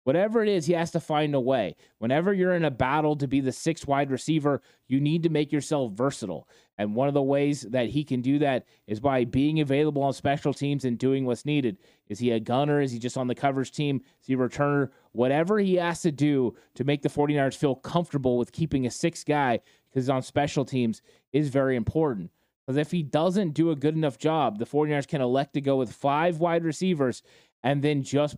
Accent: American